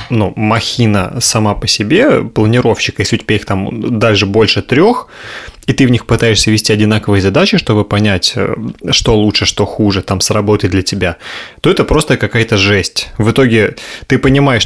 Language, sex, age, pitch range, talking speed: Russian, male, 20-39, 105-125 Hz, 170 wpm